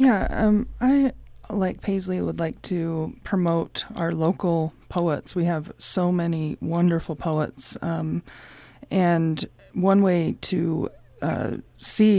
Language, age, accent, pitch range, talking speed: English, 20-39, American, 160-185 Hz, 125 wpm